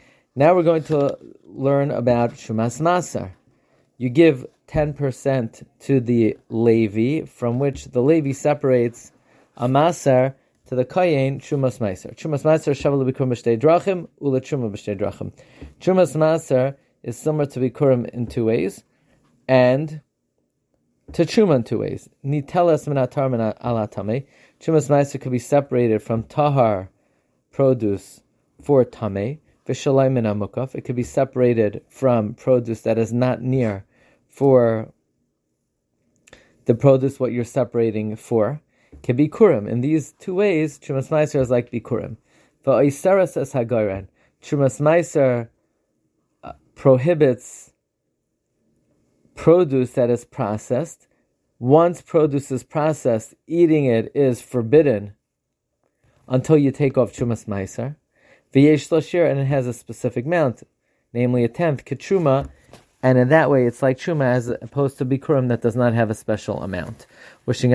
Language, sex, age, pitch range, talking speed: English, male, 30-49, 120-145 Hz, 115 wpm